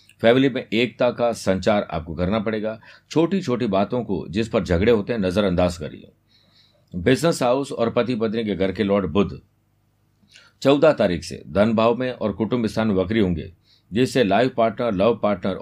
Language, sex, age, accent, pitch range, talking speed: Hindi, male, 50-69, native, 100-120 Hz, 110 wpm